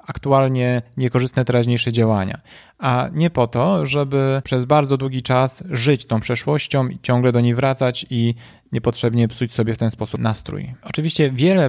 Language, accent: Polish, native